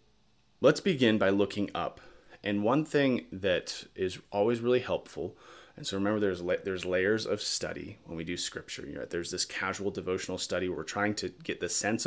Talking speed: 195 wpm